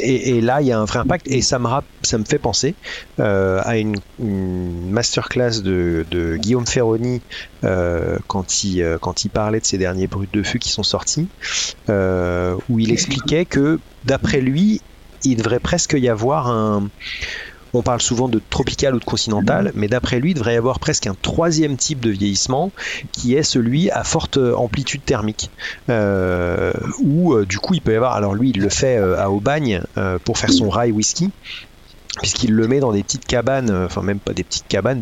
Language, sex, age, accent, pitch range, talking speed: French, male, 40-59, French, 100-130 Hz, 200 wpm